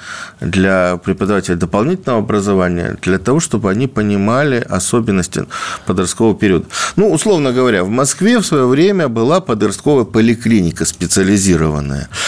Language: Russian